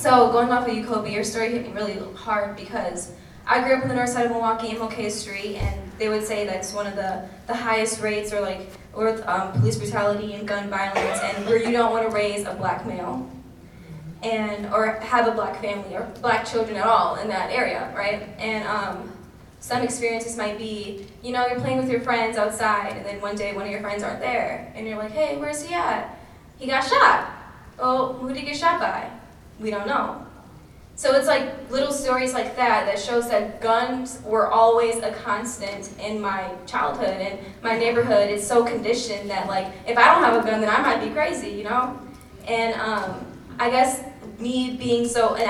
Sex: female